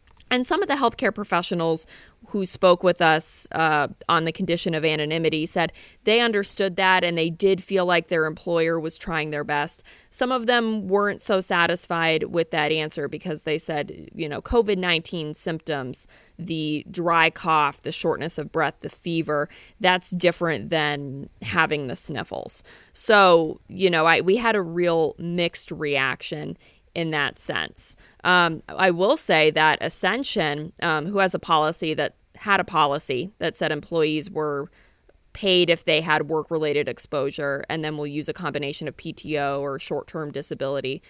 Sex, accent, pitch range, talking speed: female, American, 155-185 Hz, 160 wpm